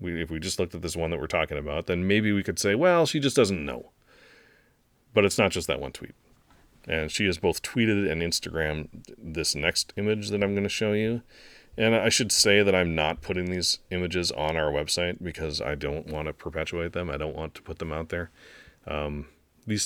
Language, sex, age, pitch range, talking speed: English, male, 30-49, 75-105 Hz, 225 wpm